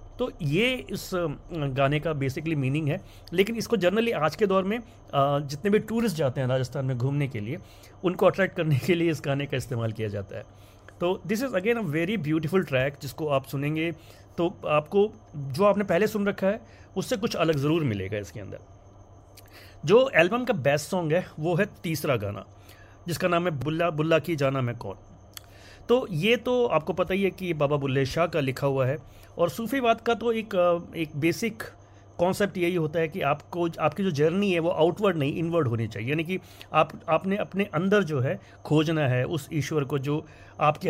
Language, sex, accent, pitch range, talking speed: Hindi, male, native, 135-190 Hz, 200 wpm